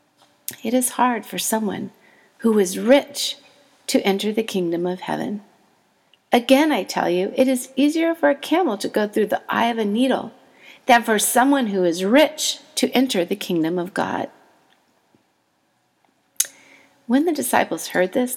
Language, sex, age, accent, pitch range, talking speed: English, female, 40-59, American, 185-265 Hz, 160 wpm